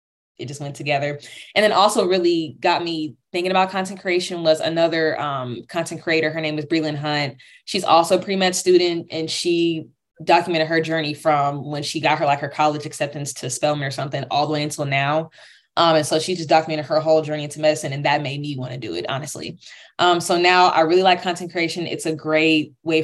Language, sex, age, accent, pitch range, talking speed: English, female, 20-39, American, 155-185 Hz, 220 wpm